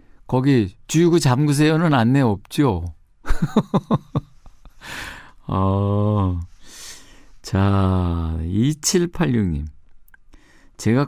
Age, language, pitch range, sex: 50-69, Korean, 105-140 Hz, male